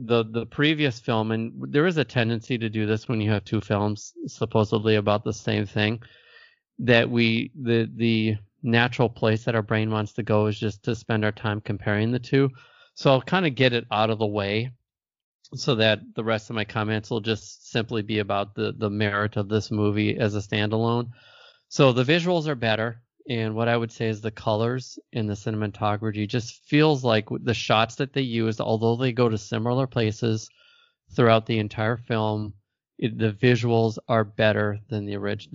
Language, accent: English, American